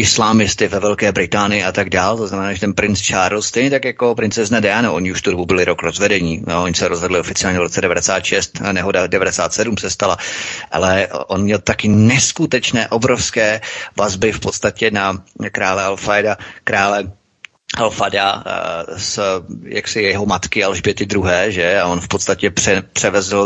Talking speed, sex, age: 160 wpm, male, 30-49